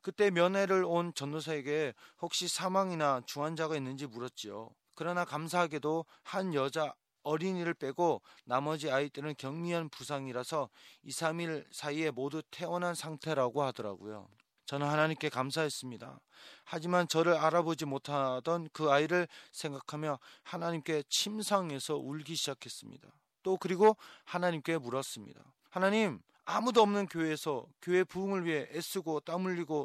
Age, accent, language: 30-49, native, Korean